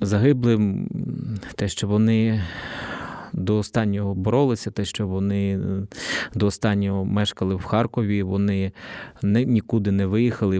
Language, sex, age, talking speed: Ukrainian, male, 20-39, 110 wpm